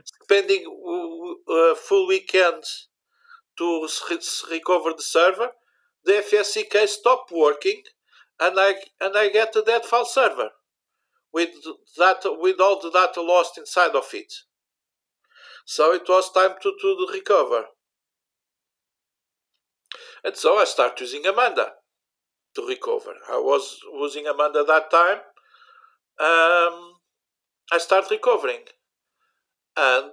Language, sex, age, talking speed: English, male, 50-69, 120 wpm